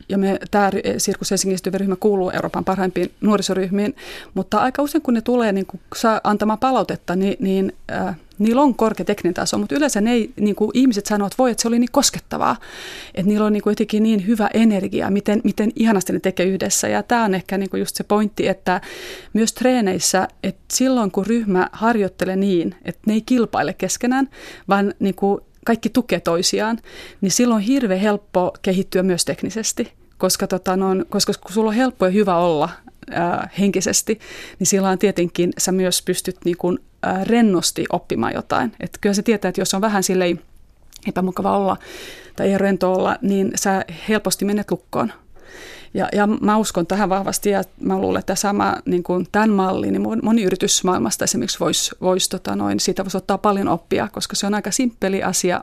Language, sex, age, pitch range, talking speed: Finnish, female, 30-49, 185-220 Hz, 185 wpm